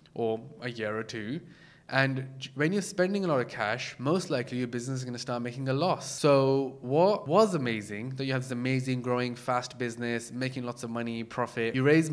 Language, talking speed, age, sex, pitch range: English, 215 wpm, 20-39, male, 120-145 Hz